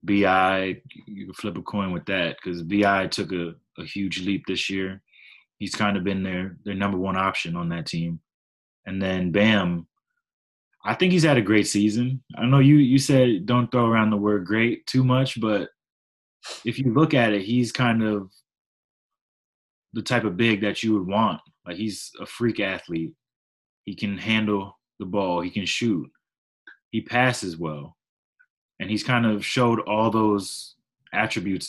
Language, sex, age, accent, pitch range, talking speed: English, male, 20-39, American, 90-110 Hz, 180 wpm